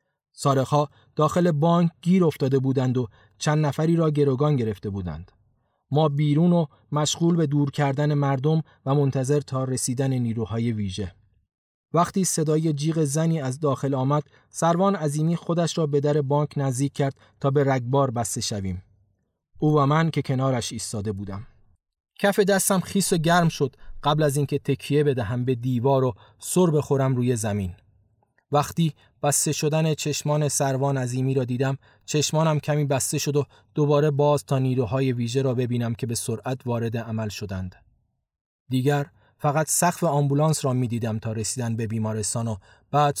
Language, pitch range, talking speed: Persian, 120-150 Hz, 155 wpm